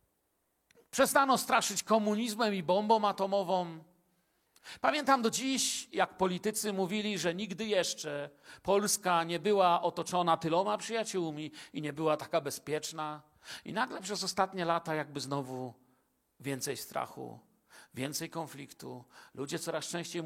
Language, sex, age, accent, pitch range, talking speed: Polish, male, 50-69, native, 155-215 Hz, 120 wpm